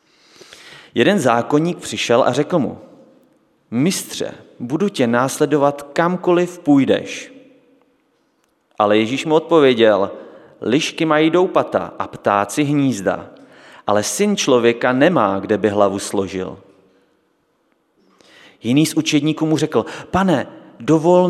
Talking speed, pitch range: 105 wpm, 115-155 Hz